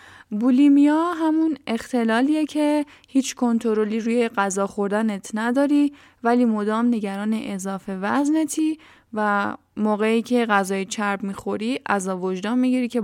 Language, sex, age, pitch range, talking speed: Persian, female, 10-29, 210-275 Hz, 115 wpm